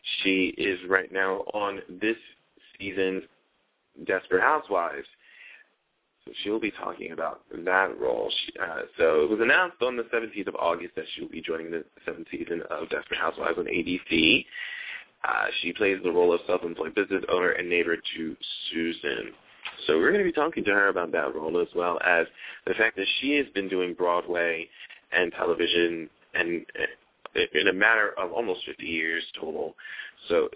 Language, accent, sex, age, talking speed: English, American, male, 20-39, 170 wpm